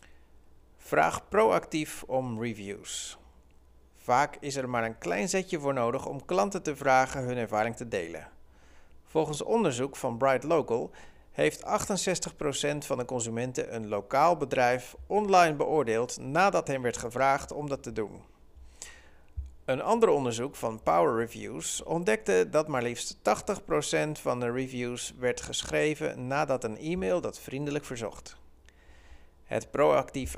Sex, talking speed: male, 135 wpm